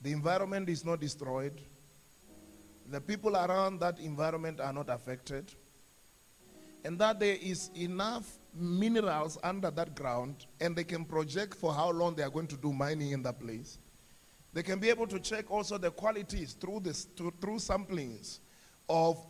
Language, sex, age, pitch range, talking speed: English, male, 30-49, 155-205 Hz, 160 wpm